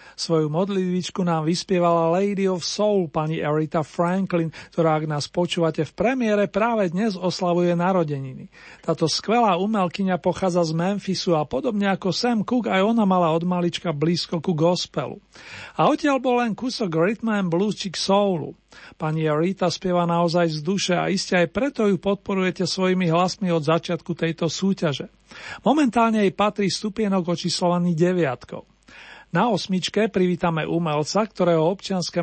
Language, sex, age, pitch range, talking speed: Slovak, male, 40-59, 165-200 Hz, 145 wpm